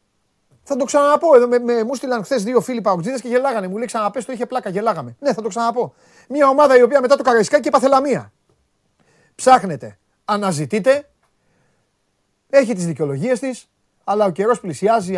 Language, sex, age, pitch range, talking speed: Greek, male, 30-49, 150-240 Hz, 170 wpm